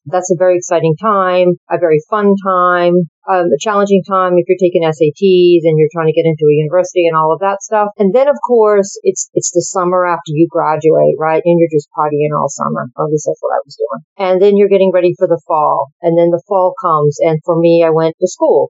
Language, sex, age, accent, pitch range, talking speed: English, female, 40-59, American, 165-200 Hz, 235 wpm